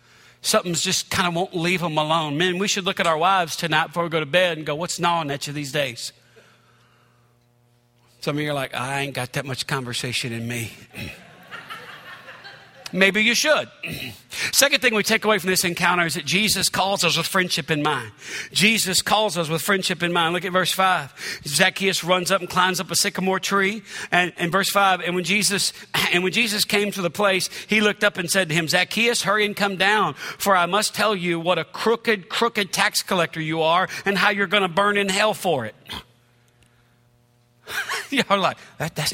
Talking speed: 205 wpm